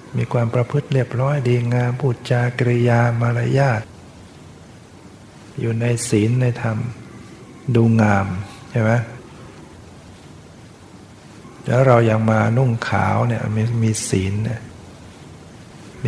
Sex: male